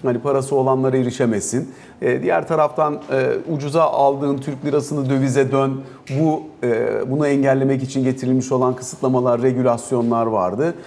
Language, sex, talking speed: Turkish, male, 135 wpm